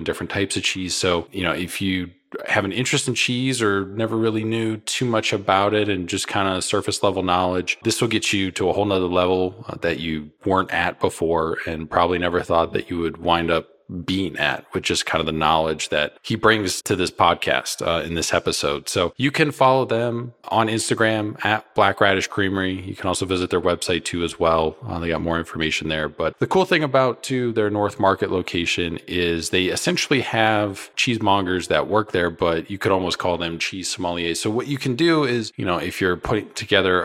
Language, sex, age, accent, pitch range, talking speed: English, male, 20-39, American, 90-110 Hz, 215 wpm